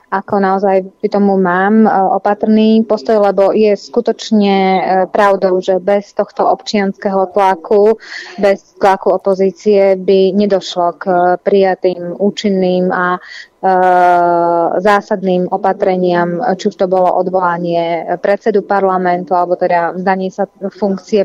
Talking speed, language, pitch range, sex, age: 110 wpm, Slovak, 185-205 Hz, female, 20-39